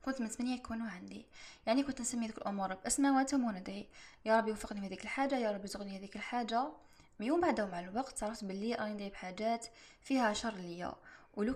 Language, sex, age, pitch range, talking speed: Arabic, female, 10-29, 200-255 Hz, 180 wpm